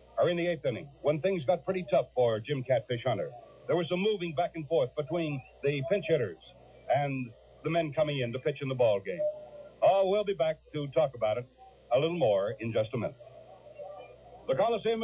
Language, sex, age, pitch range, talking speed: English, male, 60-79, 155-210 Hz, 210 wpm